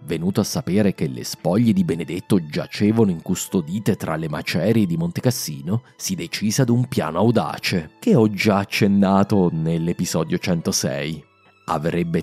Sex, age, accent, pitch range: male, 30-49, native, 85-115 Hz